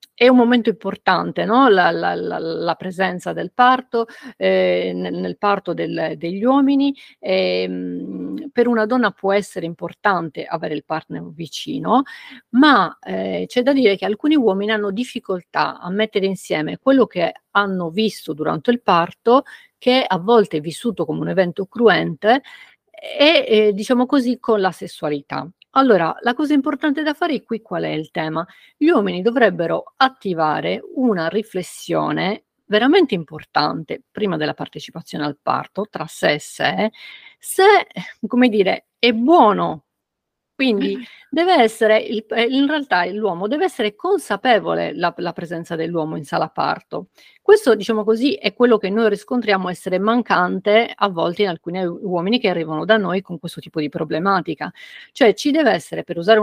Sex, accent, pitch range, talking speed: female, native, 175-255 Hz, 150 wpm